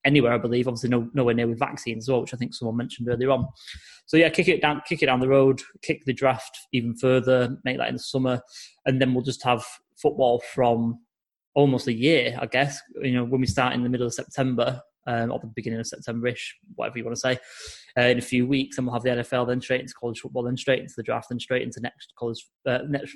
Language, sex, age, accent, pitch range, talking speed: English, male, 20-39, British, 120-135 Hz, 255 wpm